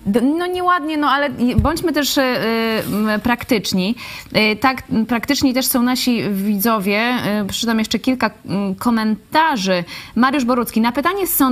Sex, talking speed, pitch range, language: female, 135 wpm, 200-245 Hz, Polish